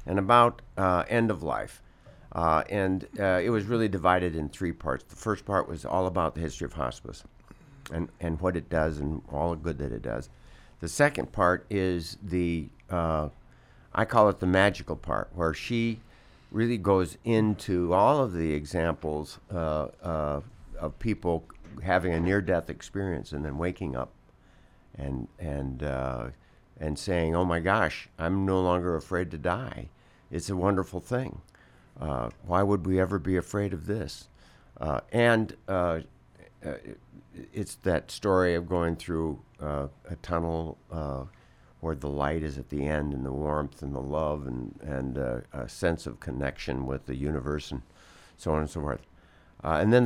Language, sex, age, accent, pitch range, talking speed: English, male, 60-79, American, 75-95 Hz, 170 wpm